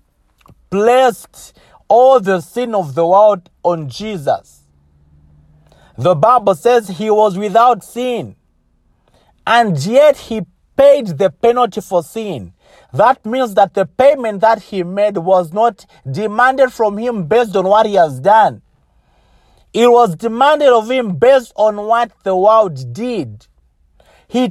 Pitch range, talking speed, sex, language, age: 170-230 Hz, 135 wpm, male, English, 50-69